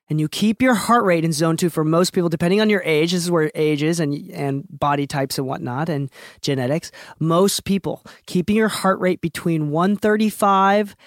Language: English